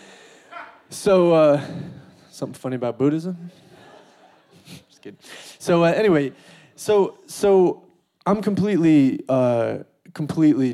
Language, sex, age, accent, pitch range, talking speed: English, male, 30-49, American, 140-190 Hz, 95 wpm